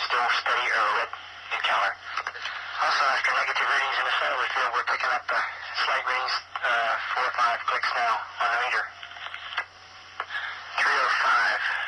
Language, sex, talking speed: English, male, 150 wpm